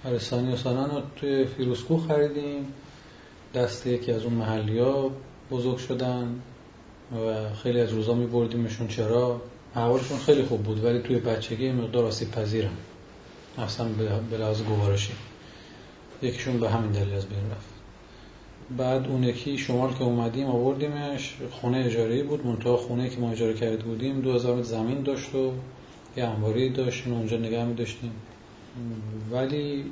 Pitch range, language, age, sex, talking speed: 110-130 Hz, Persian, 30-49, male, 135 wpm